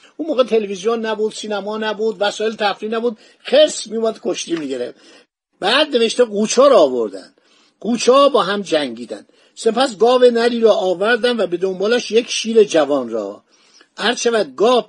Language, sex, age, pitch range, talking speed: Persian, male, 50-69, 185-235 Hz, 145 wpm